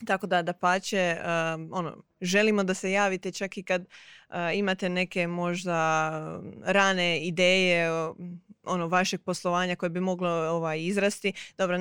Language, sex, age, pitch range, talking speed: Croatian, female, 20-39, 170-195 Hz, 140 wpm